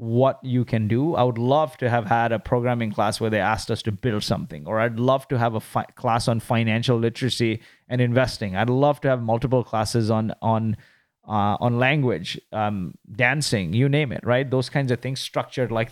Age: 20-39